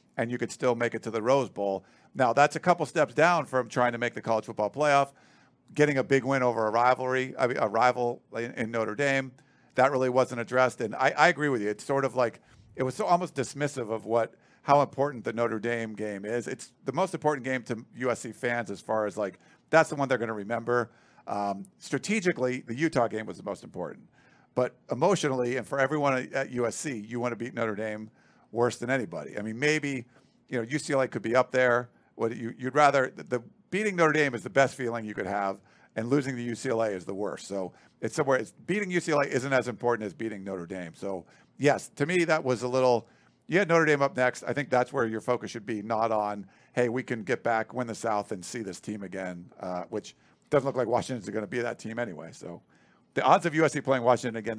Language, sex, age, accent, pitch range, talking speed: English, male, 50-69, American, 115-135 Hz, 235 wpm